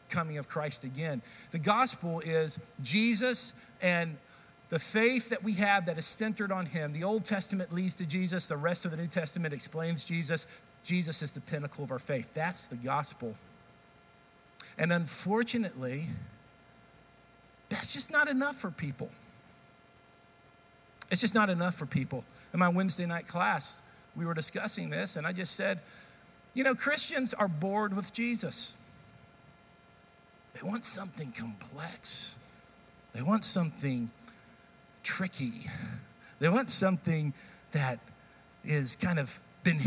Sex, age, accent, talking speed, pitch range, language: male, 50-69, American, 140 wpm, 140-195 Hz, English